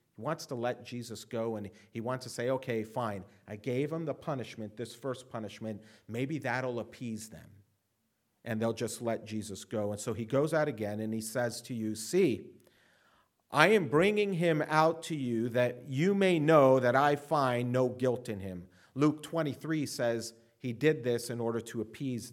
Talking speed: 190 wpm